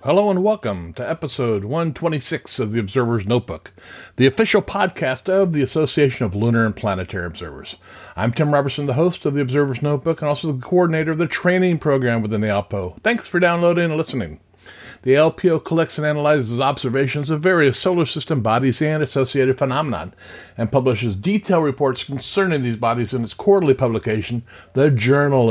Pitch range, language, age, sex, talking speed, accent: 115-155 Hz, English, 50-69, male, 170 wpm, American